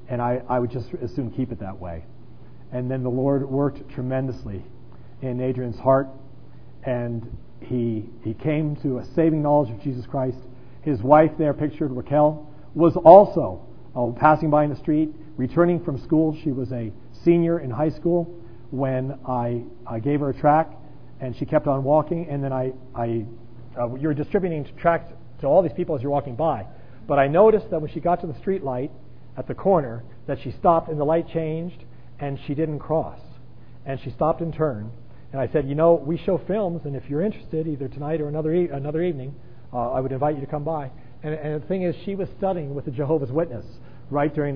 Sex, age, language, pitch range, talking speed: male, 40-59, English, 125-155 Hz, 205 wpm